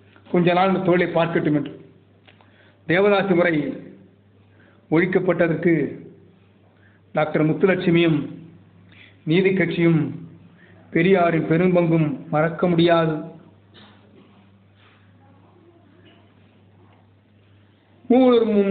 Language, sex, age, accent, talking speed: Tamil, male, 50-69, native, 55 wpm